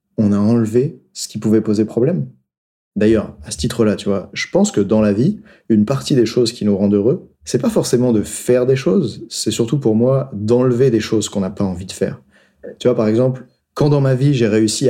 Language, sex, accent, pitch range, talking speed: French, male, French, 105-125 Hz, 240 wpm